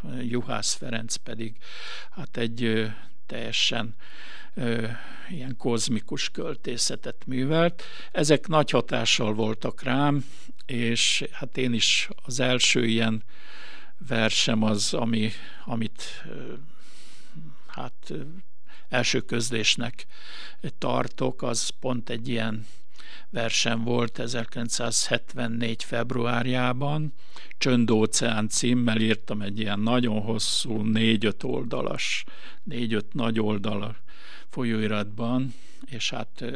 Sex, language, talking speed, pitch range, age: male, Hungarian, 80 wpm, 110-130 Hz, 60-79